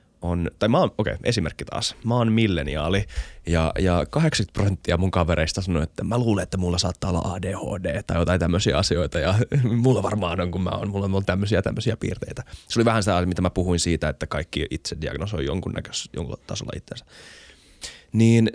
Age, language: 20-39, Finnish